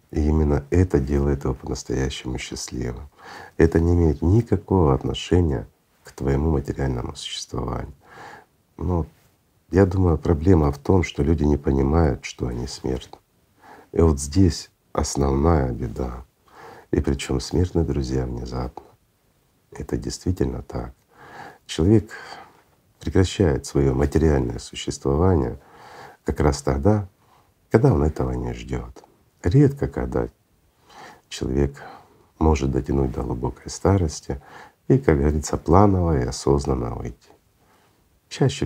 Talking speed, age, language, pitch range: 110 wpm, 50-69, Russian, 65-85 Hz